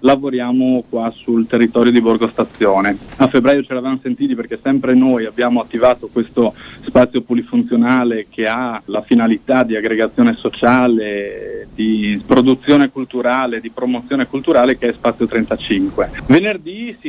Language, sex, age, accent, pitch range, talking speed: Italian, male, 30-49, native, 120-140 Hz, 135 wpm